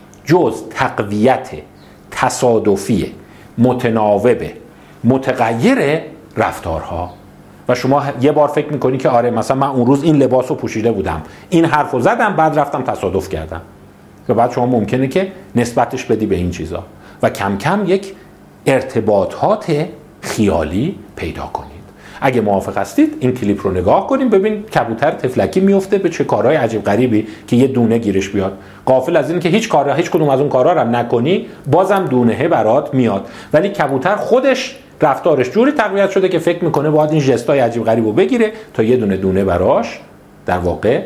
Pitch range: 105-170 Hz